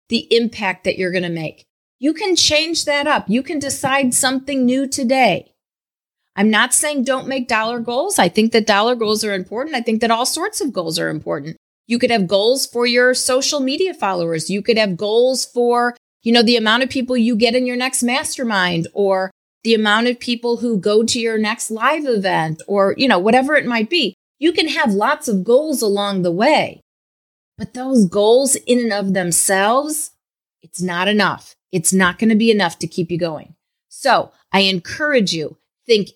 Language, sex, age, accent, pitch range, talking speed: English, female, 30-49, American, 185-255 Hz, 200 wpm